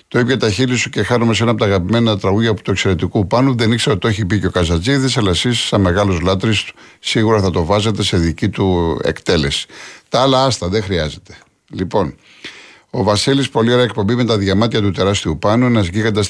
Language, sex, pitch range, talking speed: Greek, male, 95-120 Hz, 205 wpm